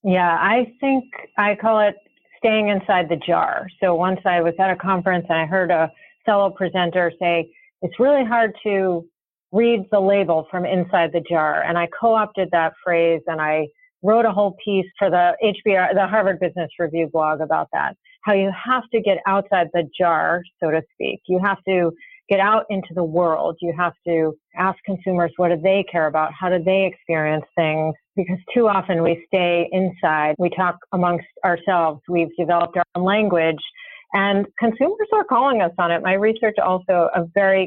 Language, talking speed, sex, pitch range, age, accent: English, 185 wpm, female, 170-205 Hz, 40-59, American